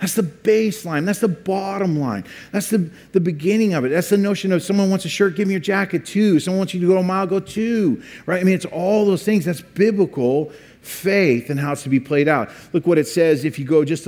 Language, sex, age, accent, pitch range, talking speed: English, male, 50-69, American, 145-185 Hz, 255 wpm